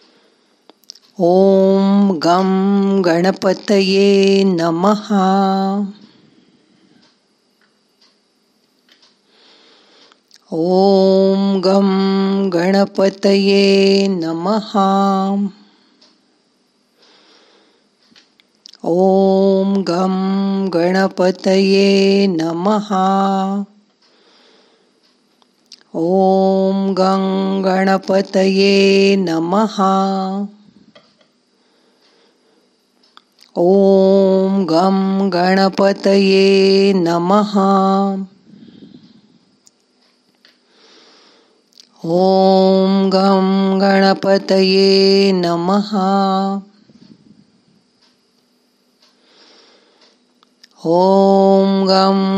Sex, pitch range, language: female, 190-200 Hz, Marathi